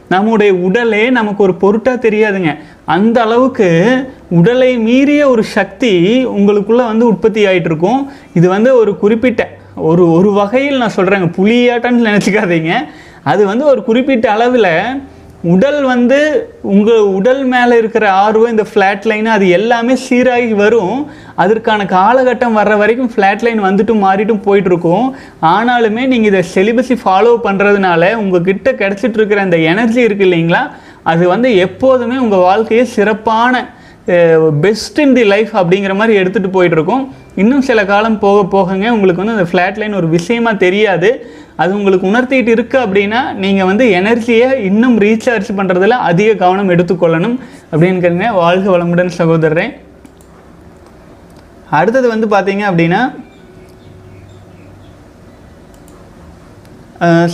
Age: 30-49